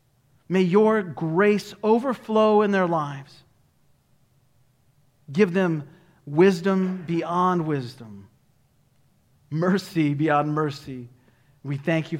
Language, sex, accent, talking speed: English, male, American, 90 wpm